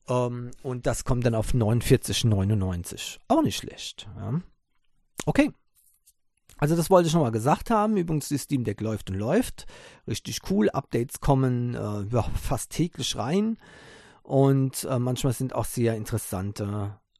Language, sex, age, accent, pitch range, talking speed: German, male, 40-59, German, 110-150 Hz, 135 wpm